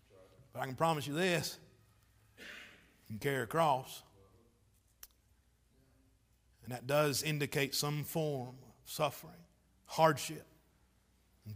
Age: 40-59